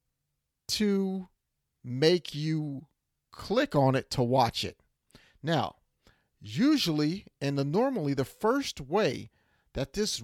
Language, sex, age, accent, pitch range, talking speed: English, male, 40-59, American, 120-180 Hz, 105 wpm